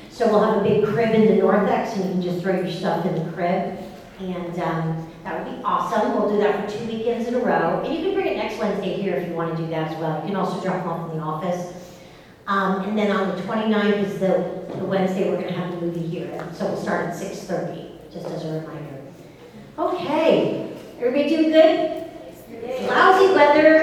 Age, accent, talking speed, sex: 40-59, American, 225 wpm, female